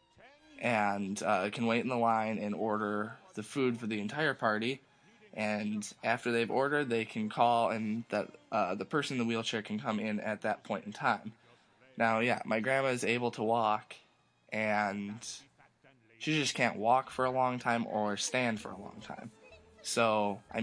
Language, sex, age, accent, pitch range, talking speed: English, male, 20-39, American, 105-125 Hz, 185 wpm